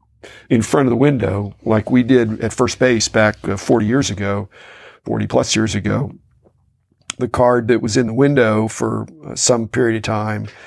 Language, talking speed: English, 180 wpm